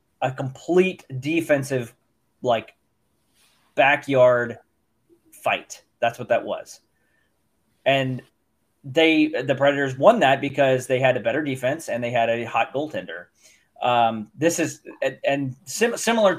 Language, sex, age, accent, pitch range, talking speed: English, male, 20-39, American, 125-160 Hz, 120 wpm